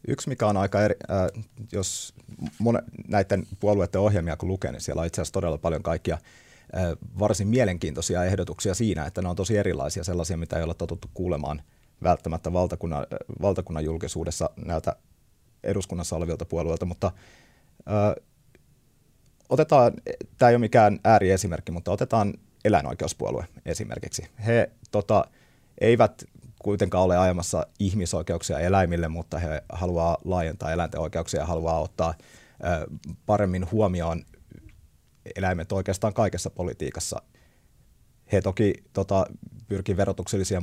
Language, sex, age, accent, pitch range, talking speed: Finnish, male, 30-49, native, 85-100 Hz, 125 wpm